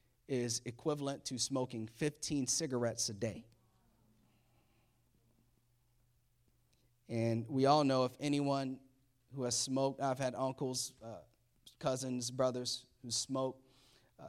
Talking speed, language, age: 110 wpm, English, 30-49